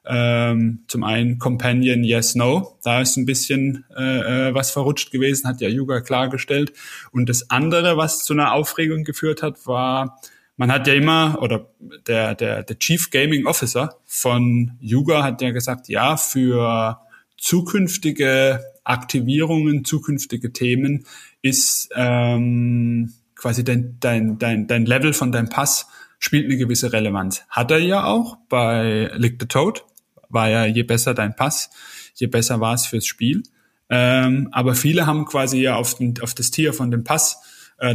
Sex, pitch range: male, 120-145 Hz